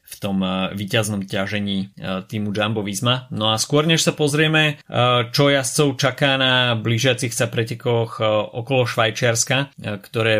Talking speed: 125 wpm